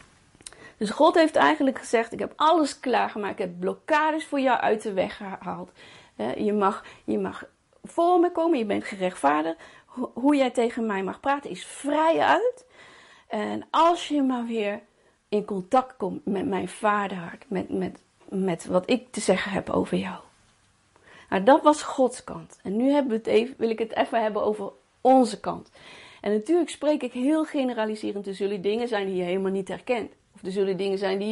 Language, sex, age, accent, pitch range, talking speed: Dutch, female, 40-59, Dutch, 200-280 Hz, 190 wpm